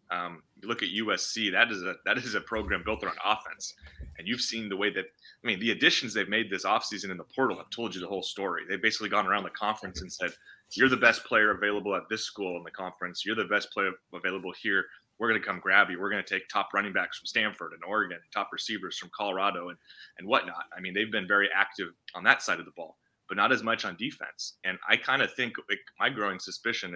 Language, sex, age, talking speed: English, male, 30-49, 255 wpm